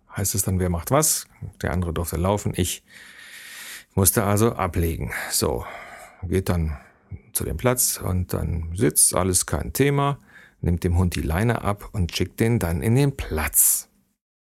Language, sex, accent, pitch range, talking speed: German, male, German, 90-120 Hz, 160 wpm